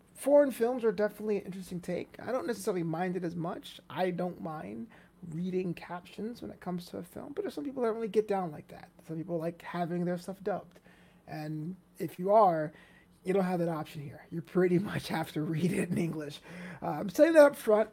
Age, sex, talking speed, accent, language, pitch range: 30-49, male, 230 wpm, American, English, 155-195 Hz